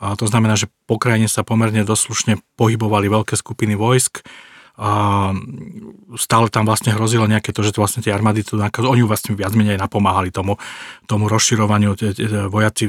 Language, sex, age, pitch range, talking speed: Slovak, male, 40-59, 105-115 Hz, 165 wpm